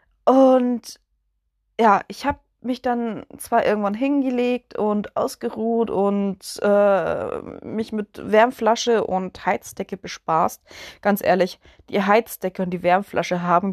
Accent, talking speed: German, 120 wpm